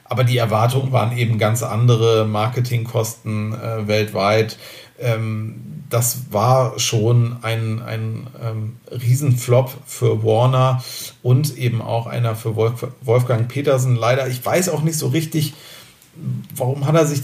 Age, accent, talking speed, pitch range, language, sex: 40-59, German, 130 wpm, 115-130 Hz, German, male